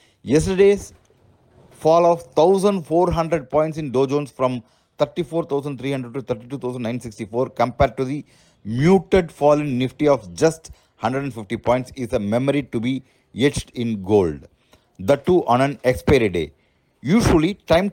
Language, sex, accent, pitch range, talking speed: English, male, Indian, 120-160 Hz, 130 wpm